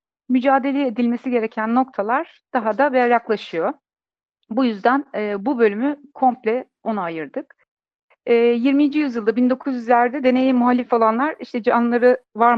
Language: Turkish